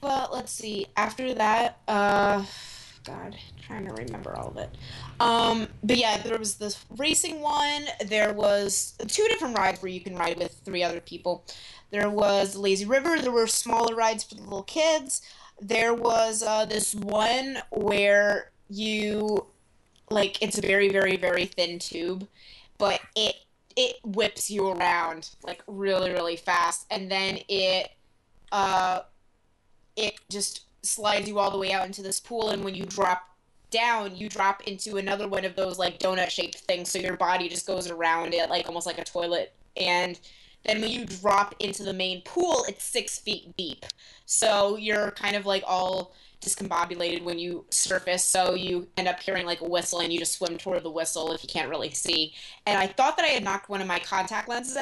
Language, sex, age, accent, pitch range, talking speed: English, female, 20-39, American, 180-215 Hz, 185 wpm